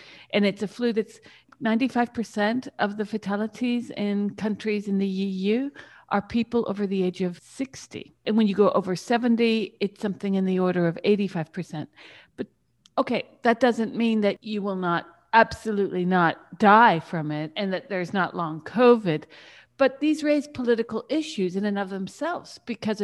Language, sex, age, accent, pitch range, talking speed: English, female, 60-79, American, 190-235 Hz, 165 wpm